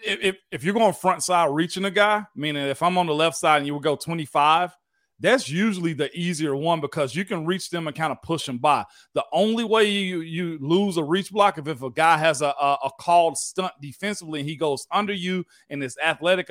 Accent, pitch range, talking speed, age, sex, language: American, 155-195 Hz, 240 wpm, 40-59, male, English